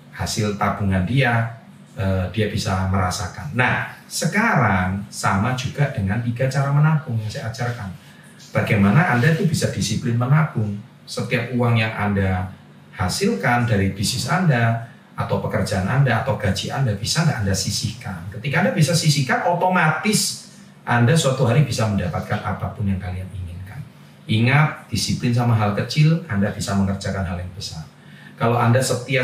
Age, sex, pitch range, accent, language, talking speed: 40-59, male, 100-135 Hz, native, Indonesian, 140 wpm